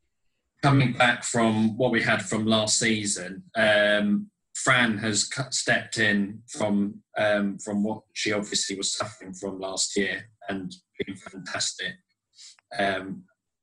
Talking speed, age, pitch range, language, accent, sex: 125 wpm, 20-39, 100-110 Hz, English, British, male